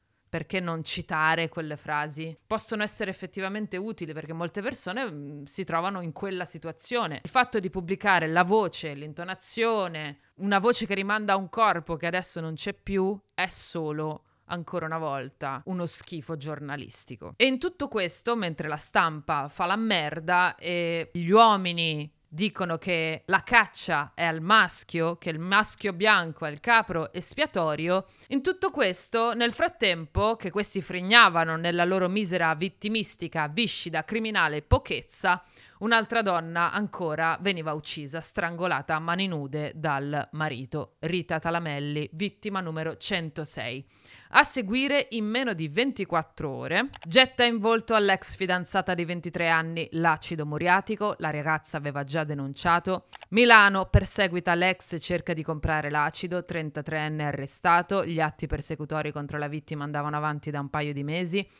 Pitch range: 155-200 Hz